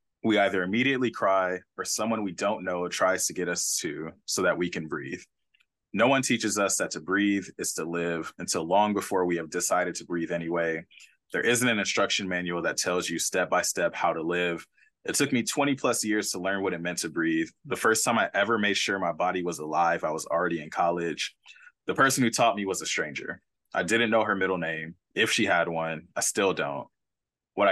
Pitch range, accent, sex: 85-105 Hz, American, male